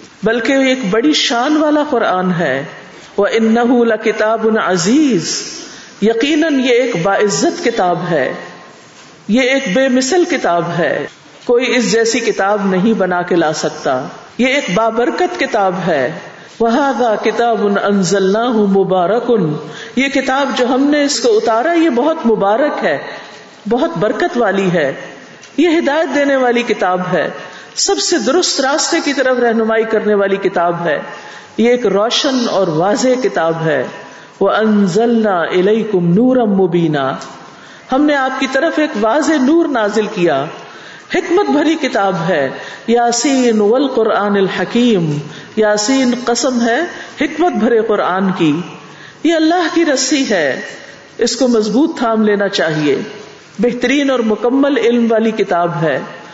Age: 50-69